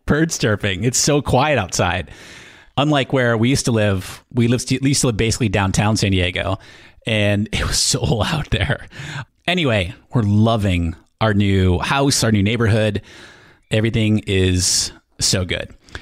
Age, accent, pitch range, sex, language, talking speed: 30-49, American, 105-135 Hz, male, English, 155 wpm